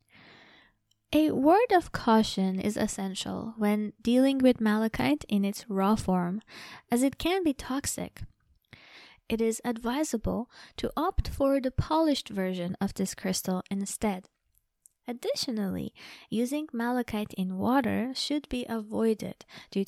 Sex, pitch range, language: female, 195-250 Hz, English